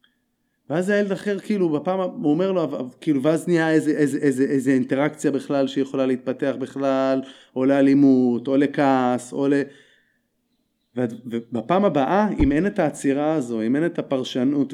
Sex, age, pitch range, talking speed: male, 30-49, 135-200 Hz, 150 wpm